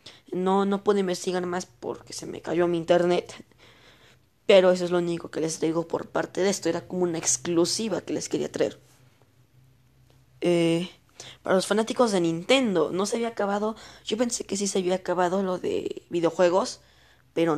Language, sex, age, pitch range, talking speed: Spanish, female, 20-39, 155-185 Hz, 180 wpm